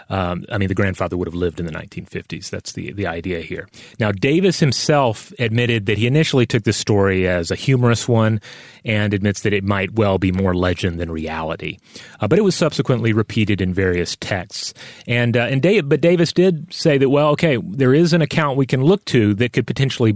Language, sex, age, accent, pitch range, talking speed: English, male, 30-49, American, 100-135 Hz, 215 wpm